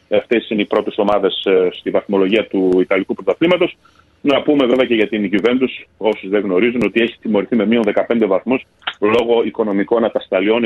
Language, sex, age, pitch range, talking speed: Greek, male, 40-59, 100-130 Hz, 170 wpm